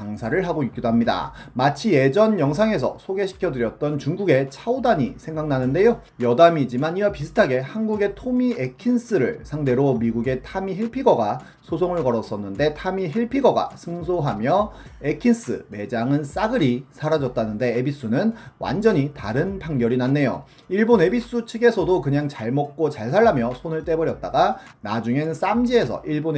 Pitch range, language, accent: 125-200 Hz, Korean, native